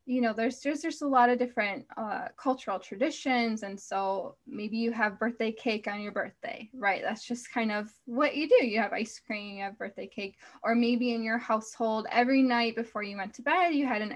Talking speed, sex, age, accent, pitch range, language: 225 wpm, female, 10-29, American, 215-255 Hz, English